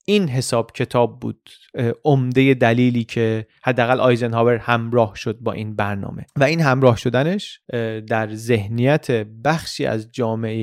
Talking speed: 130 wpm